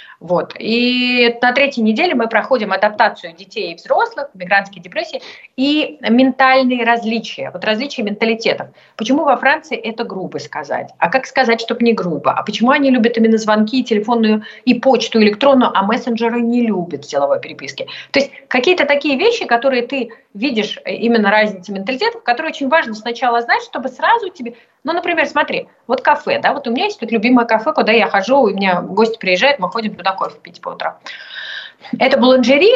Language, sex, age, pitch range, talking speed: Russian, female, 30-49, 215-285 Hz, 175 wpm